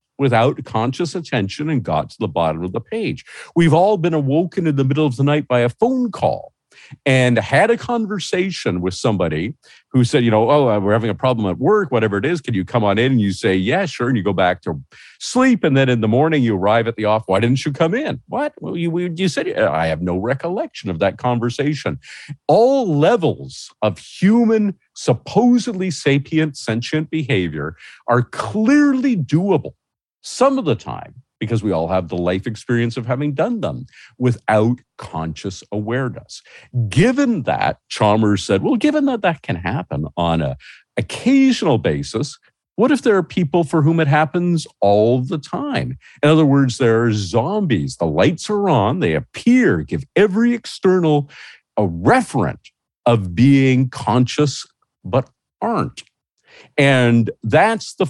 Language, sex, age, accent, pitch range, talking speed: English, male, 50-69, American, 110-170 Hz, 175 wpm